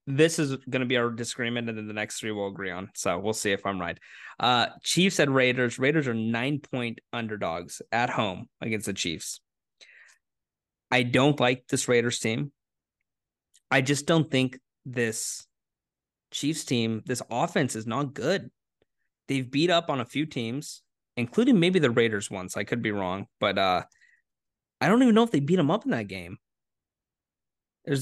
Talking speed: 180 wpm